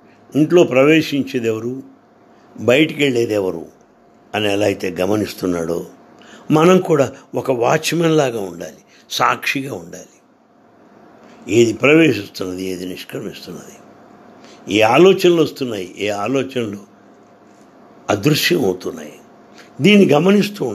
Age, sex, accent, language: 60-79, male, Indian, English